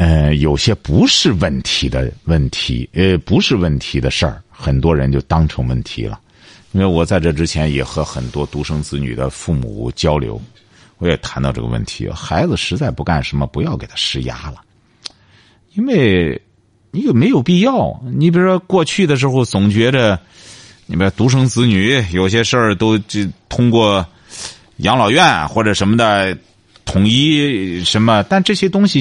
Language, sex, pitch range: Chinese, male, 80-115 Hz